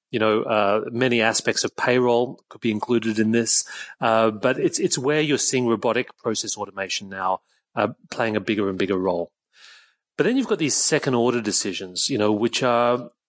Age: 30-49